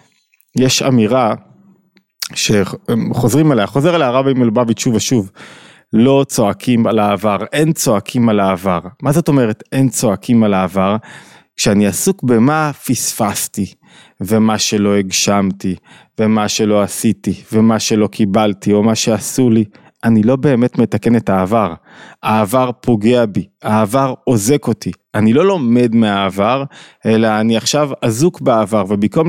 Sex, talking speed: male, 135 wpm